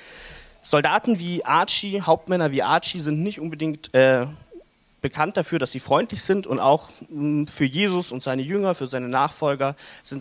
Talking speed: 160 wpm